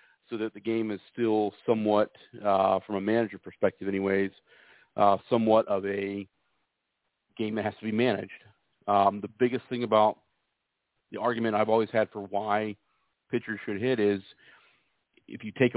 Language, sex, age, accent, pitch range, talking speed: English, male, 40-59, American, 100-115 Hz, 160 wpm